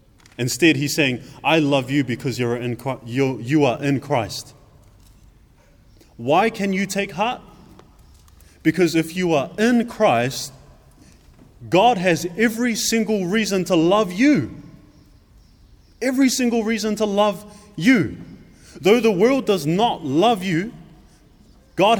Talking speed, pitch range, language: 130 wpm, 125-195 Hz, English